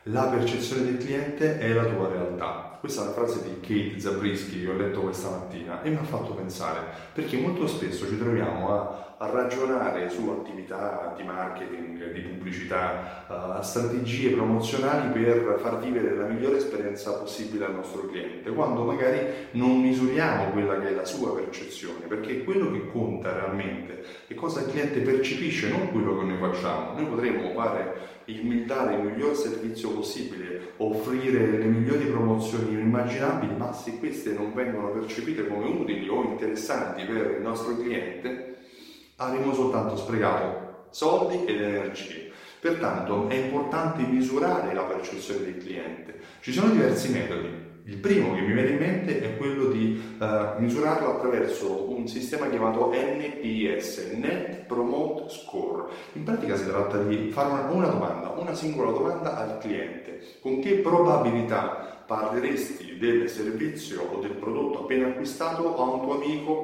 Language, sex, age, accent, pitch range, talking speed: Italian, male, 30-49, native, 100-130 Hz, 150 wpm